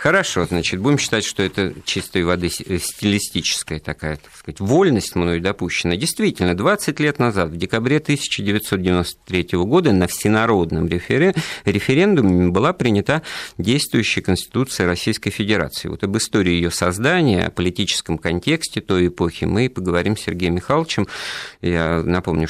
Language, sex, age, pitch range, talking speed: Russian, male, 50-69, 85-120 Hz, 130 wpm